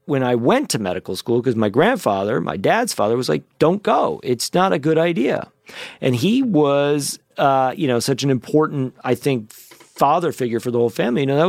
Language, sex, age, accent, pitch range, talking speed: English, male, 40-59, American, 115-145 Hz, 215 wpm